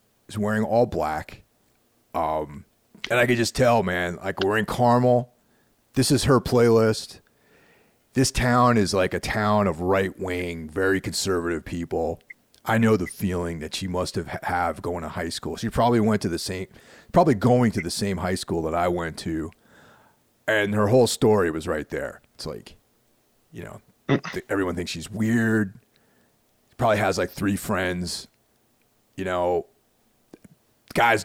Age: 40-59